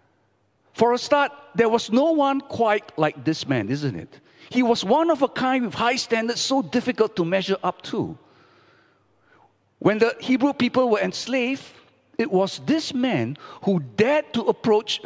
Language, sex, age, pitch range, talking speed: English, male, 50-69, 145-245 Hz, 165 wpm